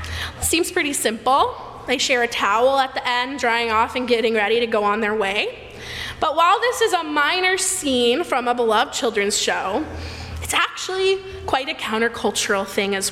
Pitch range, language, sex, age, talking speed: 245-335 Hz, English, female, 20-39, 180 wpm